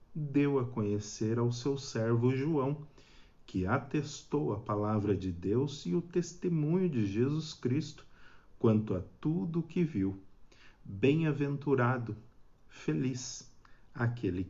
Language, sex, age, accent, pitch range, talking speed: Portuguese, male, 50-69, Brazilian, 105-130 Hz, 115 wpm